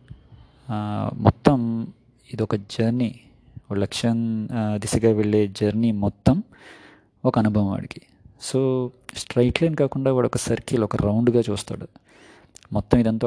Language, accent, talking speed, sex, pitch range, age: Telugu, native, 100 wpm, male, 105-120 Hz, 20-39